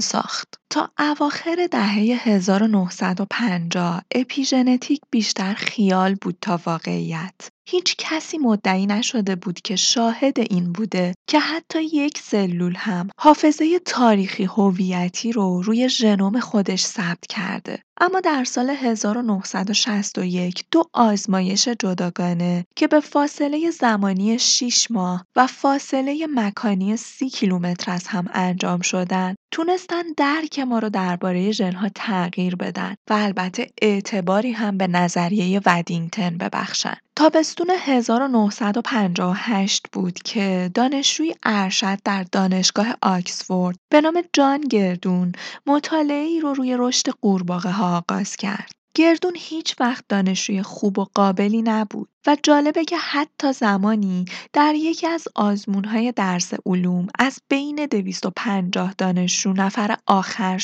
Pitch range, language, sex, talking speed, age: 190-270 Hz, Persian, female, 120 wpm, 20-39